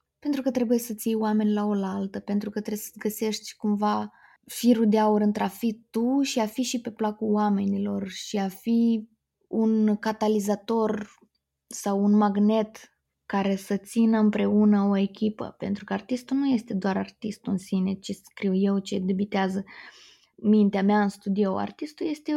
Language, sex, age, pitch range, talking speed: Romanian, female, 20-39, 205-245 Hz, 170 wpm